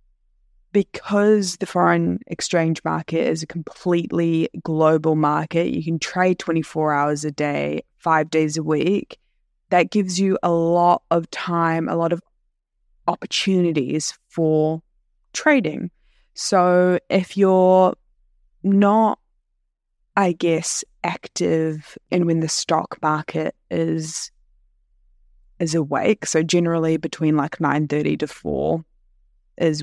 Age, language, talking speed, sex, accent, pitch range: 20-39, English, 115 wpm, female, Australian, 150-180 Hz